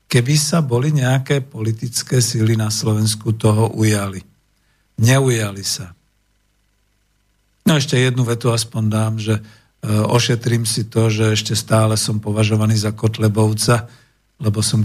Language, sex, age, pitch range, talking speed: Slovak, male, 50-69, 110-130 Hz, 130 wpm